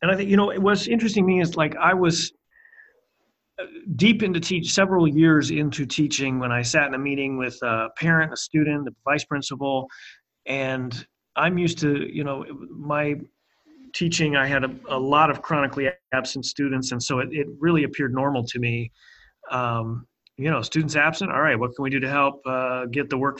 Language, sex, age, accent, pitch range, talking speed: English, male, 40-59, American, 130-160 Hz, 195 wpm